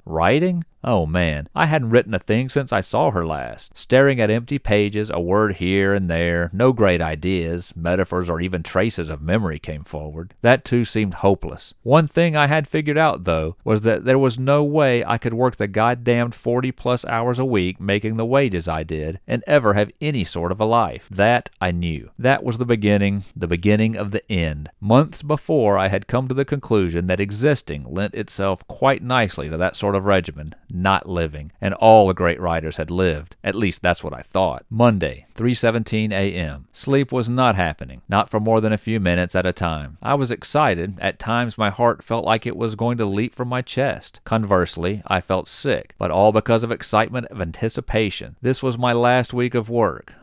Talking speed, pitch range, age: 205 wpm, 90-120 Hz, 40-59